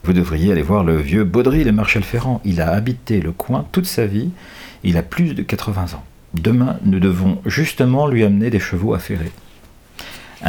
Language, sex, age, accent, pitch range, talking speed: French, male, 50-69, French, 90-125 Hz, 205 wpm